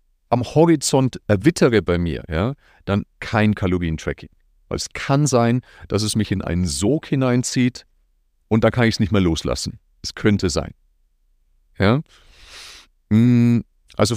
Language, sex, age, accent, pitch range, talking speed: German, male, 40-59, German, 85-120 Hz, 140 wpm